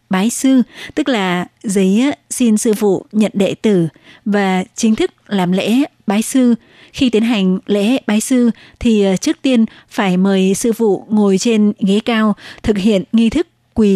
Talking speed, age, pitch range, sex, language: 170 wpm, 20-39, 195-230 Hz, female, Vietnamese